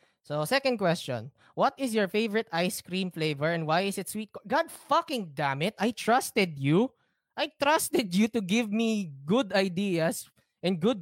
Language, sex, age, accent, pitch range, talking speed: Filipino, male, 20-39, native, 135-195 Hz, 180 wpm